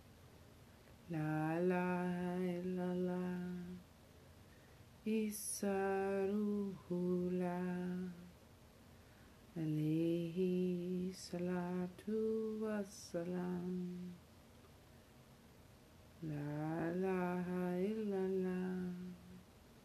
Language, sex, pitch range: English, female, 170-185 Hz